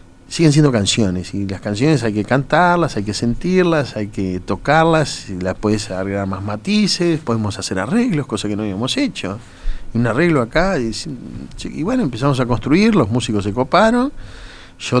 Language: Spanish